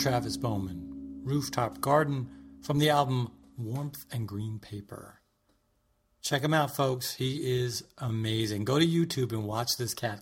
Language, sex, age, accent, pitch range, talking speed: English, male, 40-59, American, 120-165 Hz, 145 wpm